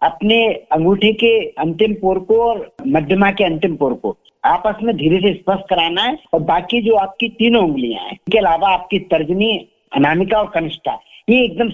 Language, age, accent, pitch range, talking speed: Hindi, 50-69, native, 160-215 Hz, 180 wpm